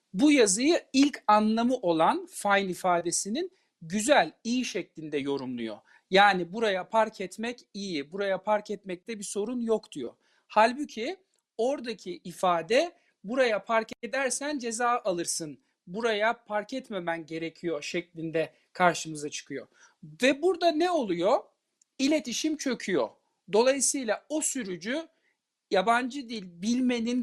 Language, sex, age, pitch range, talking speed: Turkish, male, 50-69, 190-270 Hz, 110 wpm